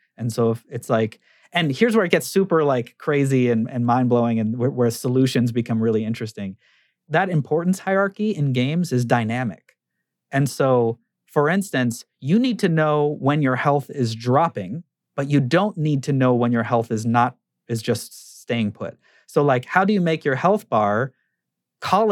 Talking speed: 185 wpm